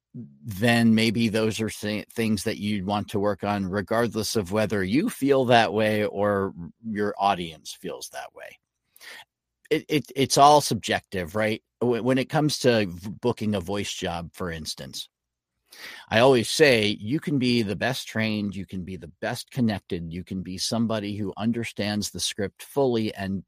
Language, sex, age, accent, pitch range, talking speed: English, male, 40-59, American, 100-125 Hz, 165 wpm